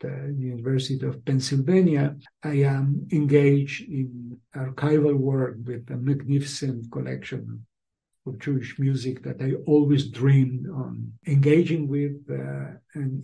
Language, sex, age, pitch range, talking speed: English, male, 60-79, 125-145 Hz, 120 wpm